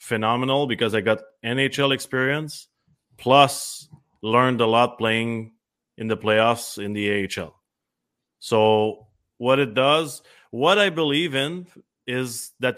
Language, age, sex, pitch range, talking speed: English, 30-49, male, 105-125 Hz, 125 wpm